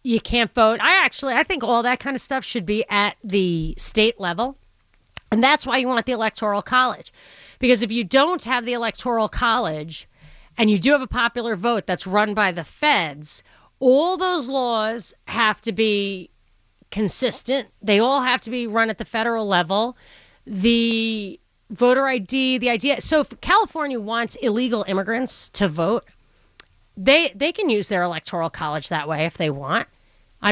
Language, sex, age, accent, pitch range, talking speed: English, female, 30-49, American, 205-260 Hz, 175 wpm